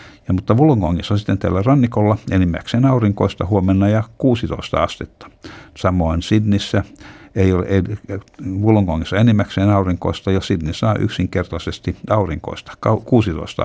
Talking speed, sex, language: 115 wpm, male, Finnish